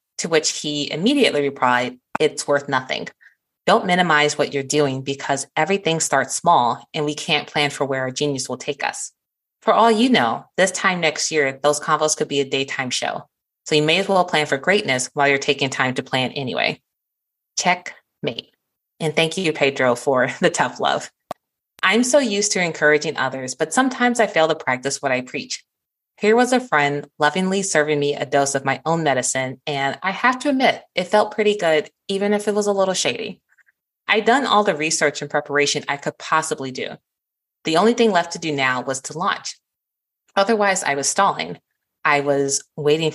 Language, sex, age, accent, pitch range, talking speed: English, female, 20-39, American, 140-190 Hz, 195 wpm